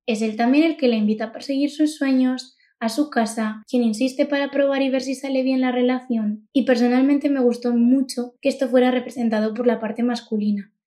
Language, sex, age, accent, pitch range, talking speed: Spanish, female, 20-39, Spanish, 225-270 Hz, 210 wpm